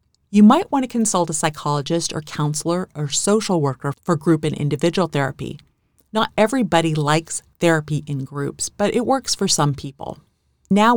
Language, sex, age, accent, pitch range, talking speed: English, female, 40-59, American, 145-175 Hz, 165 wpm